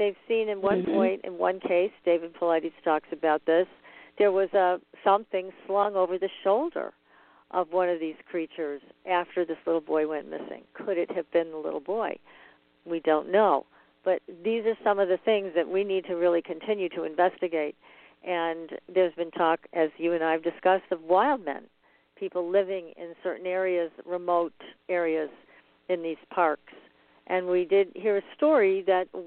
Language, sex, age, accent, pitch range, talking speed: English, female, 50-69, American, 165-195 Hz, 180 wpm